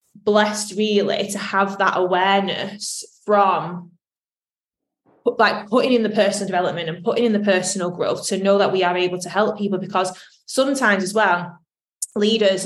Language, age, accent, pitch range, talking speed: English, 20-39, British, 180-210 Hz, 155 wpm